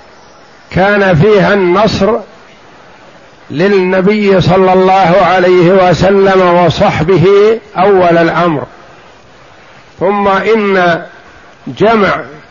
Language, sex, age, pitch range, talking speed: Arabic, male, 60-79, 165-195 Hz, 65 wpm